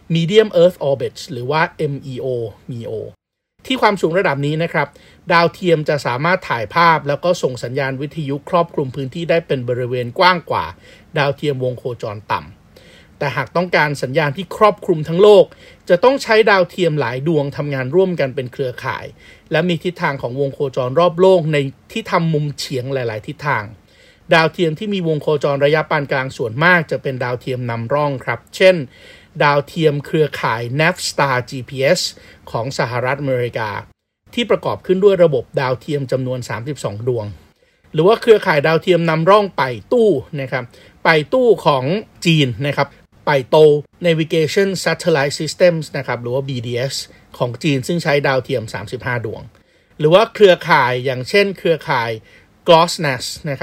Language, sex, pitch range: Thai, male, 135-175 Hz